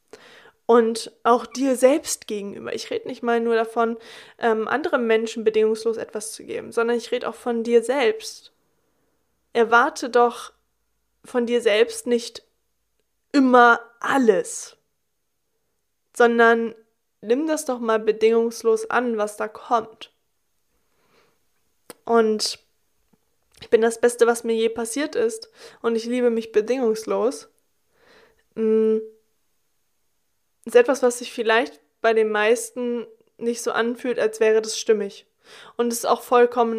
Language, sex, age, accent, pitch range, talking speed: German, female, 20-39, German, 225-255 Hz, 125 wpm